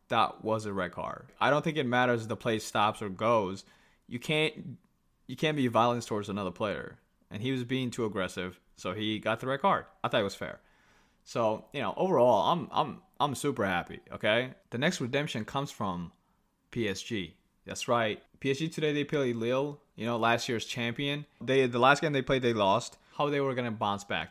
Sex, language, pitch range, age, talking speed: male, English, 105-135 Hz, 20-39, 210 wpm